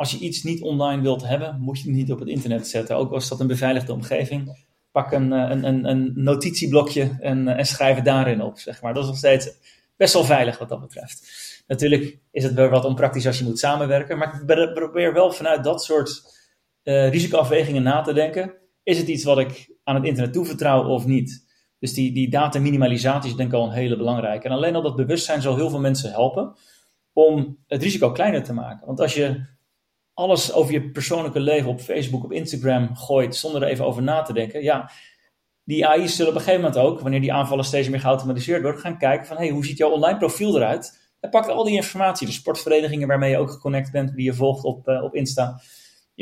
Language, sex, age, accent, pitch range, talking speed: Dutch, male, 30-49, Dutch, 130-155 Hz, 220 wpm